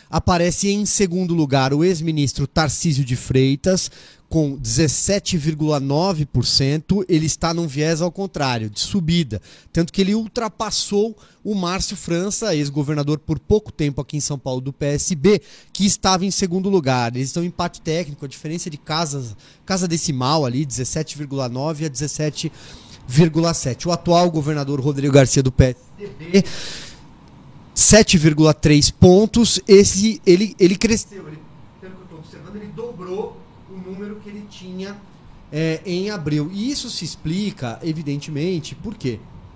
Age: 30-49